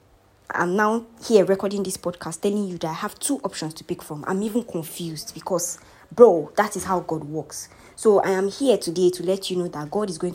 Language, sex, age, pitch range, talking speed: English, female, 20-39, 165-210 Hz, 225 wpm